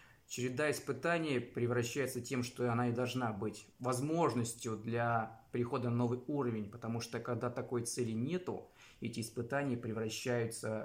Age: 20-39